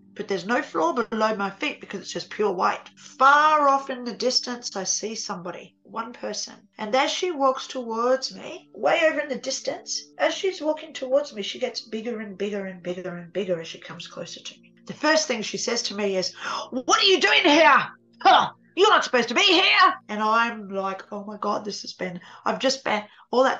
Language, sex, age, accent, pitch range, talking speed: English, female, 40-59, Australian, 205-285 Hz, 220 wpm